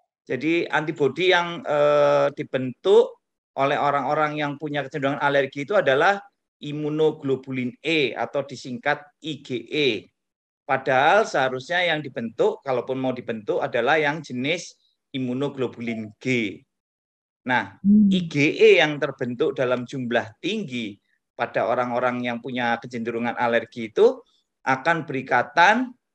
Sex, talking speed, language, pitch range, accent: male, 105 wpm, Indonesian, 125-155 Hz, native